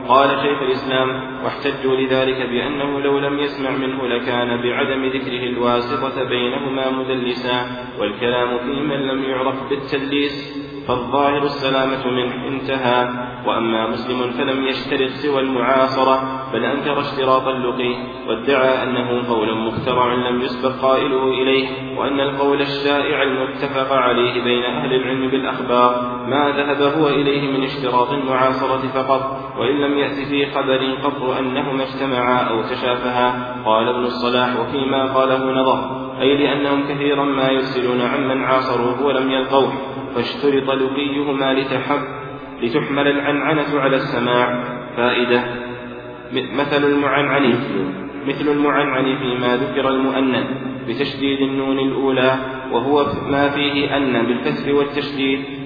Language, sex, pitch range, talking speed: Arabic, male, 125-140 Hz, 115 wpm